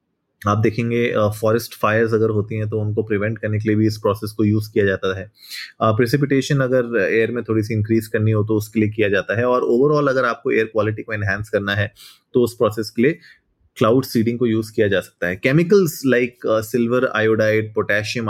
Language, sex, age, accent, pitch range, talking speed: Hindi, male, 20-39, native, 105-125 Hz, 215 wpm